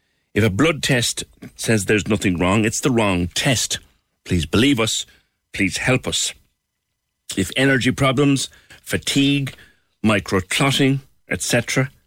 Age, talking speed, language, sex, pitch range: 60-79, 120 wpm, English, male, 95-130 Hz